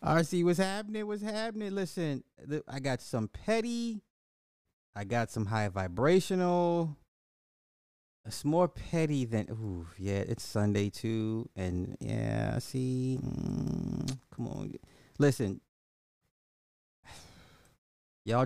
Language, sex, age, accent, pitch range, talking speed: English, male, 30-49, American, 100-145 Hz, 110 wpm